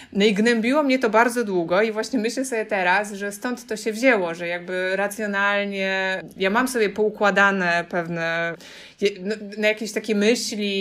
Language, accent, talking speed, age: Polish, native, 165 wpm, 20-39